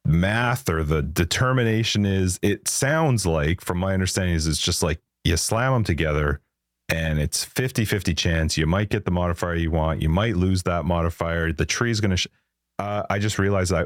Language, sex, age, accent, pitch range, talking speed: English, male, 30-49, American, 80-100 Hz, 185 wpm